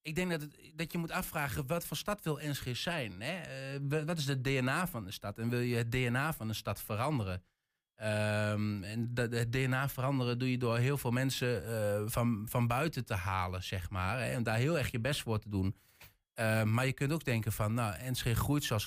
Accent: Dutch